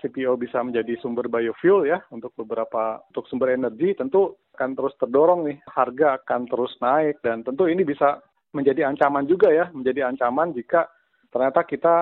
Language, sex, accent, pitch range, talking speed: Indonesian, male, native, 120-150 Hz, 165 wpm